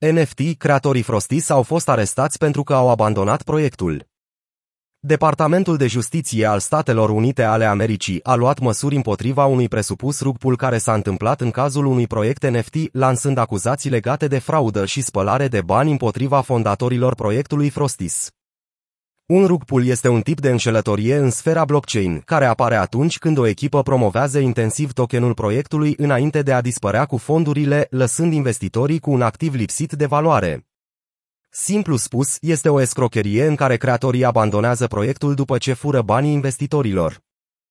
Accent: native